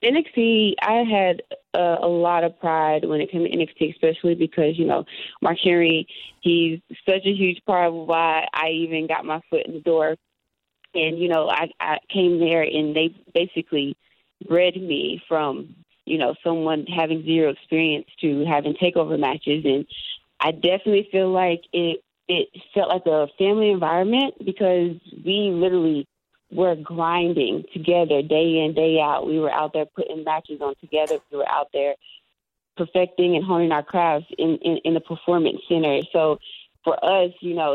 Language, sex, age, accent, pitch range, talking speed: English, female, 20-39, American, 155-180 Hz, 170 wpm